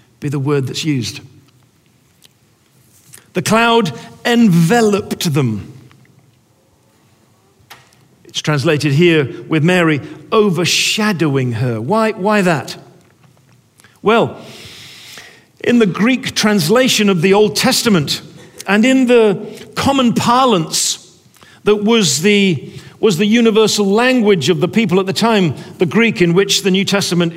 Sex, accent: male, British